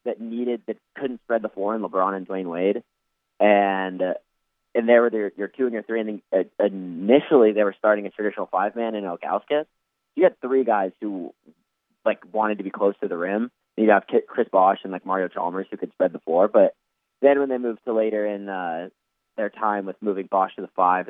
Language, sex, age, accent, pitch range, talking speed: English, male, 20-39, American, 95-110 Hz, 220 wpm